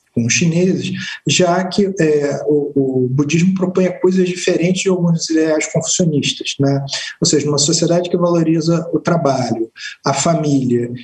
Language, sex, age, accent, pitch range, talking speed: Portuguese, male, 50-69, Brazilian, 140-175 Hz, 140 wpm